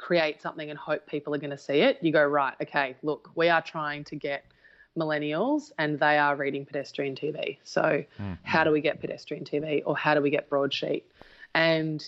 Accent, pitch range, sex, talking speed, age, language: Australian, 145-160 Hz, female, 205 wpm, 20-39, English